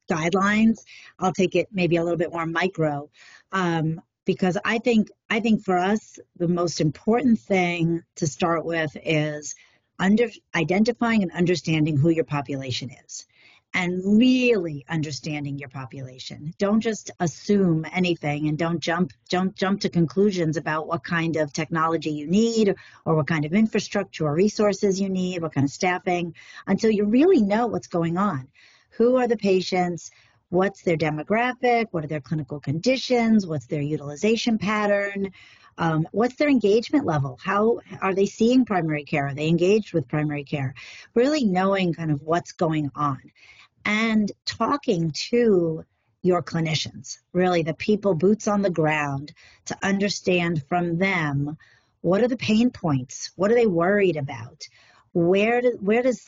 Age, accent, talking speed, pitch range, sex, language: 40-59, American, 155 wpm, 155-205 Hz, female, English